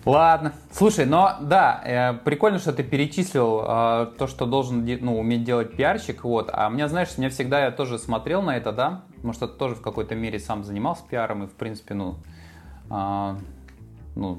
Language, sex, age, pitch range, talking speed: Russian, male, 20-39, 105-130 Hz, 185 wpm